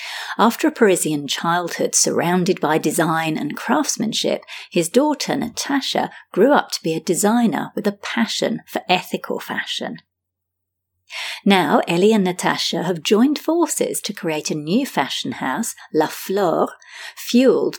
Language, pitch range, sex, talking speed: English, 170-235 Hz, female, 135 wpm